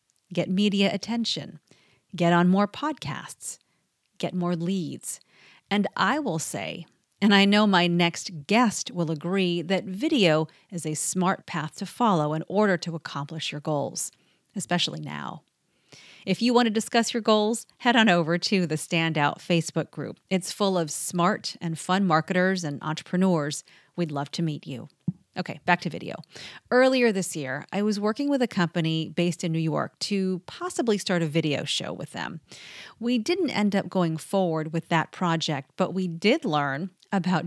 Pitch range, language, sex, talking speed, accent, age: 160-200 Hz, English, female, 170 wpm, American, 40-59